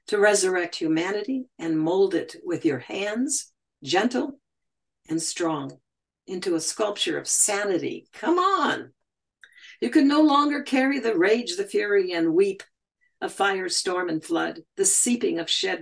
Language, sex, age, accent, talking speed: English, female, 60-79, American, 150 wpm